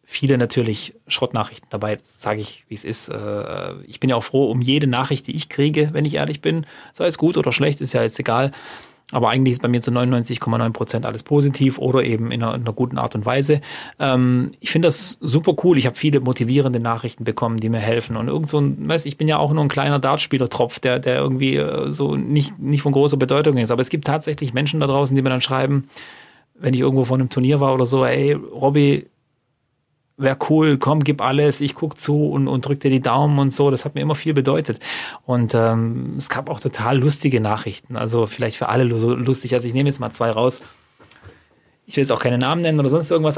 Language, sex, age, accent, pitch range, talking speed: German, male, 30-49, German, 120-145 Hz, 225 wpm